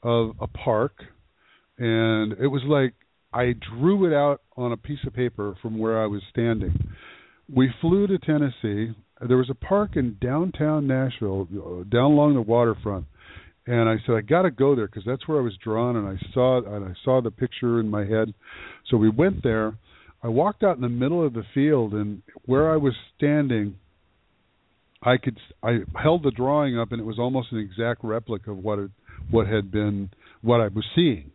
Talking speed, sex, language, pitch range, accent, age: 195 wpm, male, English, 105-135 Hz, American, 50-69